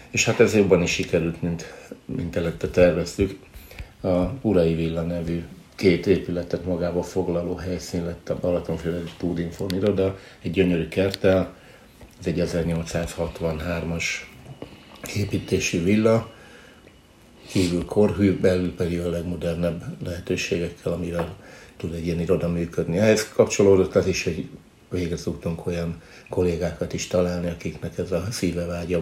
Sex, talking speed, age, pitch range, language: male, 120 wpm, 60-79, 85-95 Hz, Hungarian